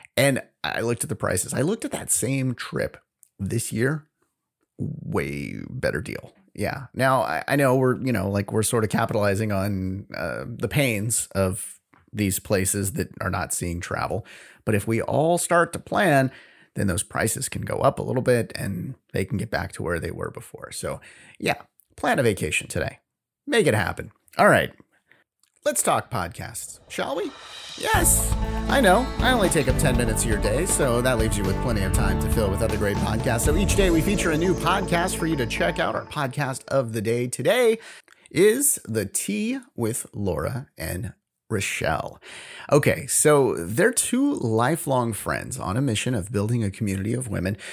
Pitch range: 100-135 Hz